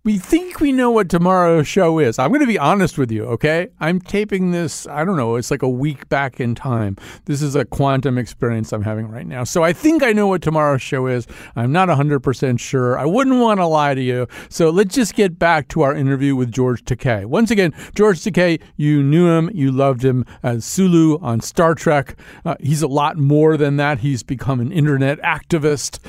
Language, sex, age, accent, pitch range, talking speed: English, male, 50-69, American, 120-160 Hz, 220 wpm